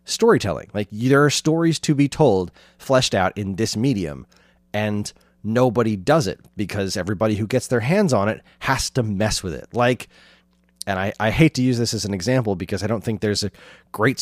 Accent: American